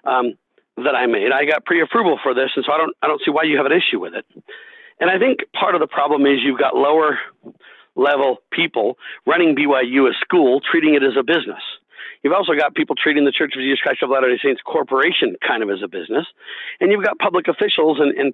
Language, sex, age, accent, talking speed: English, male, 50-69, American, 230 wpm